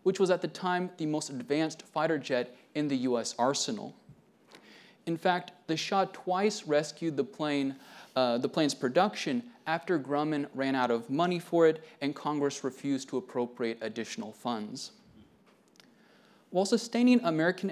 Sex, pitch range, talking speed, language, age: male, 140-190 Hz, 140 wpm, English, 30-49